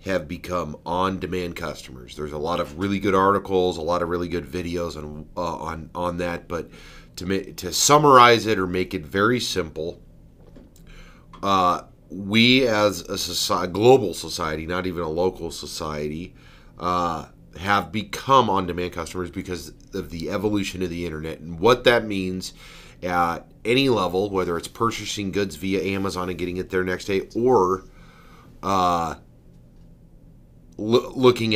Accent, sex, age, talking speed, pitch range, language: American, male, 30-49, 150 wpm, 90-120 Hz, English